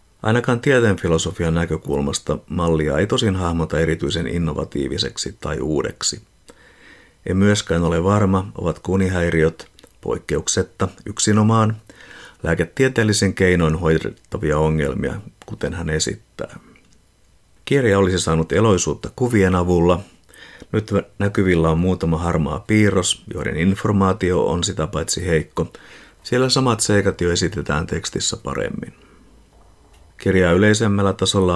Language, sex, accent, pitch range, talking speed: Finnish, male, native, 85-105 Hz, 105 wpm